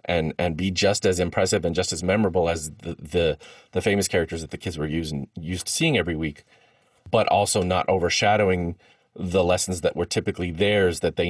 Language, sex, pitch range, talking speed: English, male, 75-90 Hz, 200 wpm